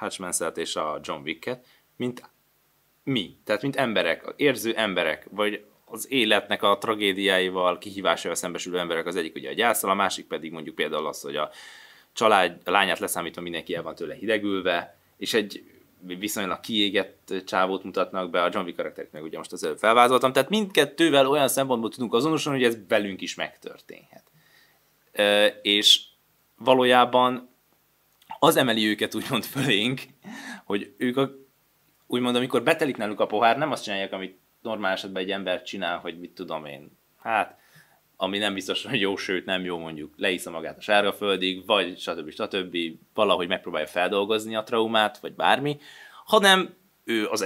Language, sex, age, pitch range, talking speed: Hungarian, male, 20-39, 95-125 Hz, 155 wpm